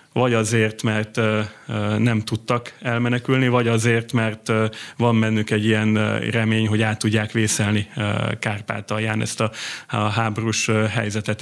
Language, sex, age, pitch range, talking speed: Hungarian, male, 30-49, 110-120 Hz, 120 wpm